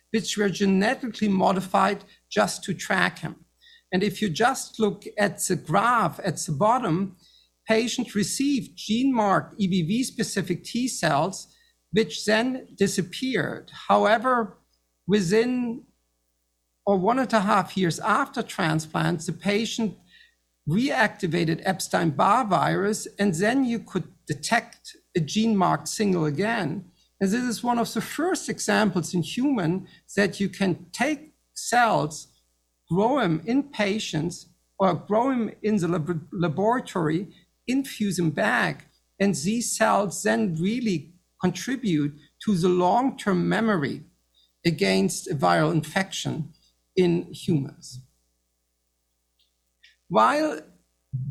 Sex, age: male, 50-69